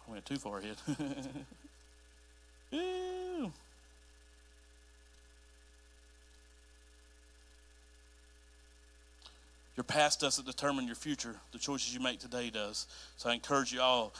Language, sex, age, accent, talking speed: English, male, 40-59, American, 90 wpm